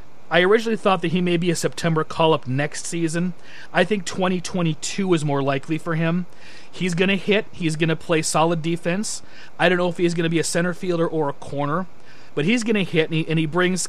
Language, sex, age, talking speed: English, male, 30-49, 235 wpm